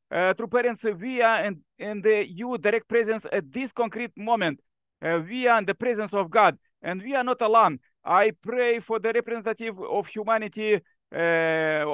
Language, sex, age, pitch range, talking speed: English, male, 50-69, 205-225 Hz, 175 wpm